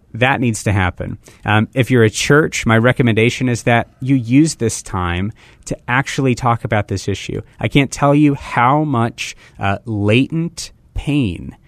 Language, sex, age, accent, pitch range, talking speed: English, male, 30-49, American, 100-130 Hz, 165 wpm